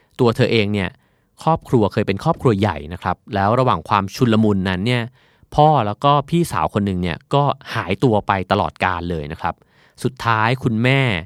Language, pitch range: Thai, 95-130 Hz